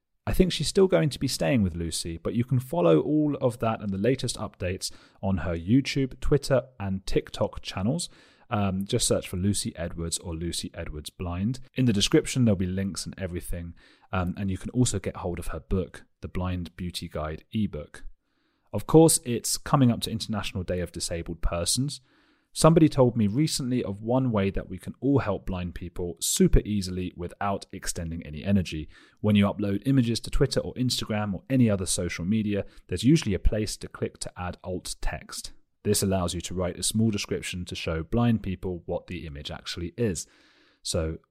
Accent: British